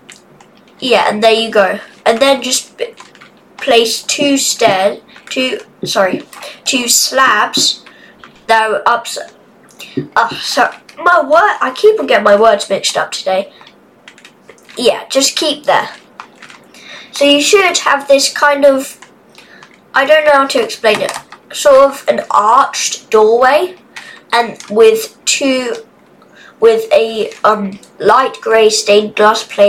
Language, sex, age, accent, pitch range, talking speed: English, female, 20-39, British, 220-280 Hz, 130 wpm